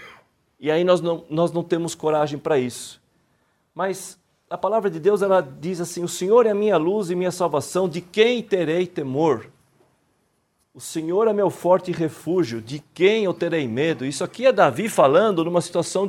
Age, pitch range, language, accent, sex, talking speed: 40-59, 140-185 Hz, Portuguese, Brazilian, male, 175 wpm